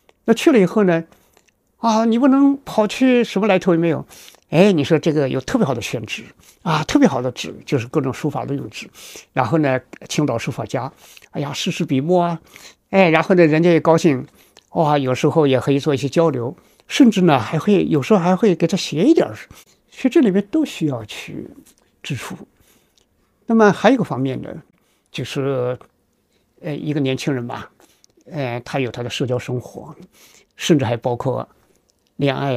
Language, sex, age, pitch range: Chinese, male, 60-79, 140-215 Hz